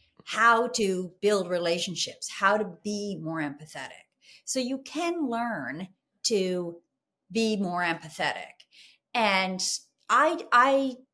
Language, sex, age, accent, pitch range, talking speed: English, female, 40-59, American, 180-245 Hz, 110 wpm